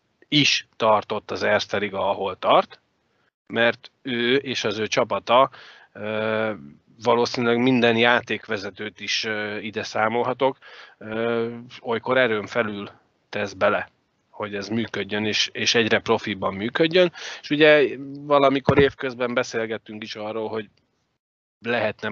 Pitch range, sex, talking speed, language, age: 110-130 Hz, male, 105 wpm, Hungarian, 30-49